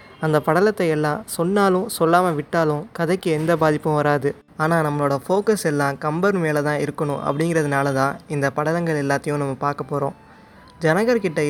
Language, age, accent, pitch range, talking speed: Tamil, 20-39, native, 145-175 Hz, 140 wpm